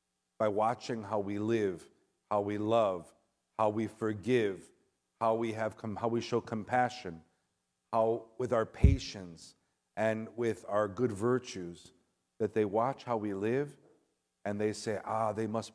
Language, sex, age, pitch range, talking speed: English, male, 50-69, 95-120 Hz, 150 wpm